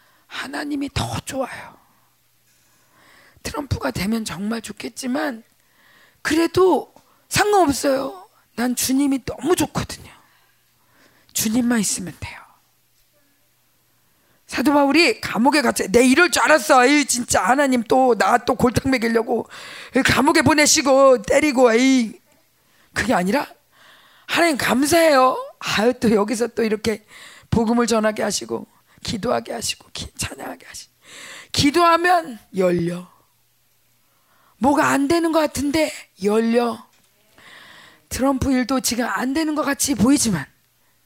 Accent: native